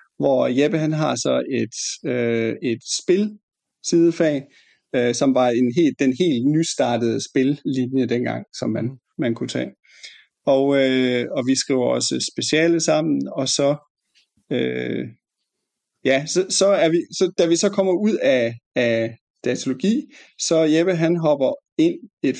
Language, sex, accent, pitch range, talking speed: Danish, male, native, 130-170 Hz, 145 wpm